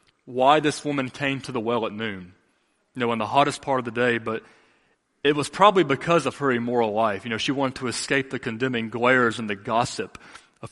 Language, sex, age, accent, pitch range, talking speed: English, male, 30-49, American, 110-140 Hz, 225 wpm